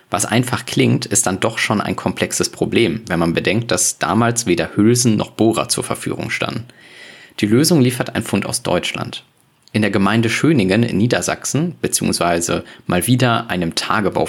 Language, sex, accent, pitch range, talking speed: German, male, German, 100-125 Hz, 170 wpm